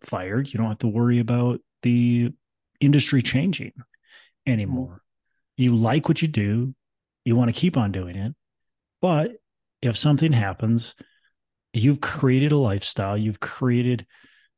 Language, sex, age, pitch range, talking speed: English, male, 30-49, 110-150 Hz, 135 wpm